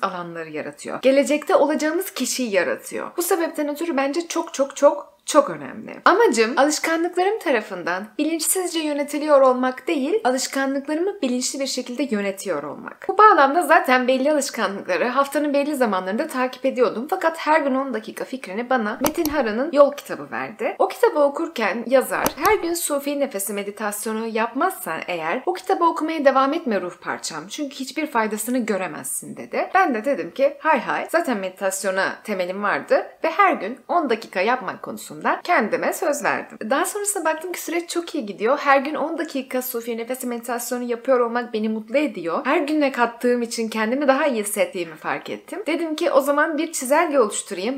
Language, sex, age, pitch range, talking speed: Turkish, female, 30-49, 220-310 Hz, 165 wpm